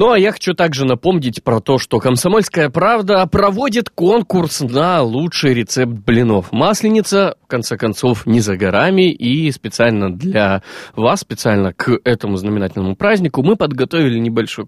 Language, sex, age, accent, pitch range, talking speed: Russian, male, 20-39, native, 105-160 Hz, 145 wpm